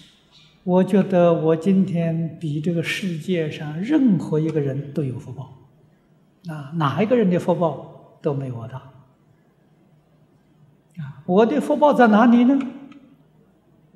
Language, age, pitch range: Chinese, 60-79, 150-180 Hz